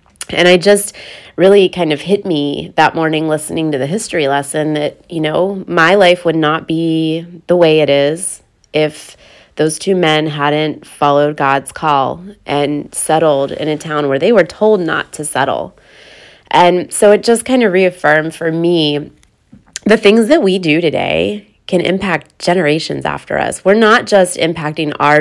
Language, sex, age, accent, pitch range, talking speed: English, female, 20-39, American, 150-185 Hz, 170 wpm